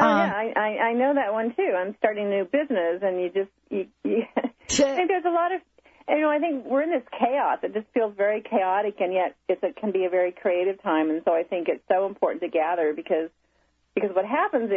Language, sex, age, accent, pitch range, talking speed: English, female, 40-59, American, 185-270 Hz, 240 wpm